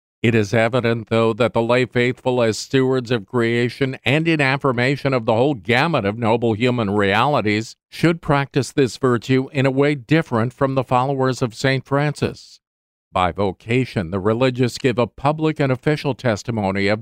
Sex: male